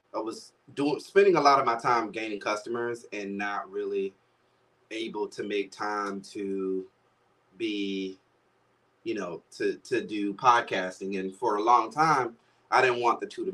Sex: male